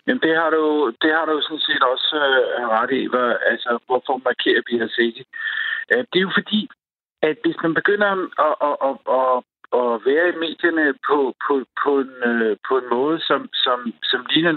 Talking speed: 185 wpm